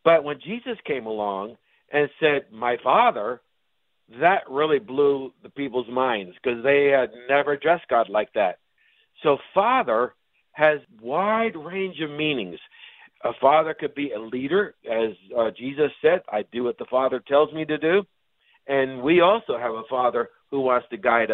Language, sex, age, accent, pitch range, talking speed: English, male, 50-69, American, 135-195 Hz, 165 wpm